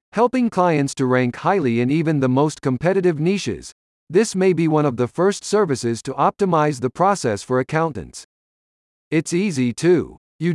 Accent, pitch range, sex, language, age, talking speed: American, 125-180 Hz, male, English, 50-69, 165 wpm